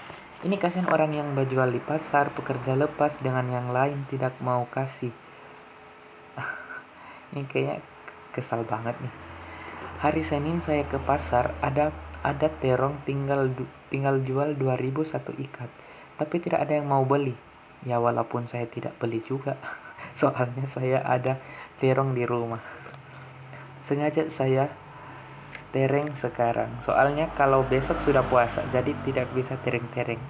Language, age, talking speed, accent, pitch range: Indonesian, 20-39, 130 wpm, native, 120-145 Hz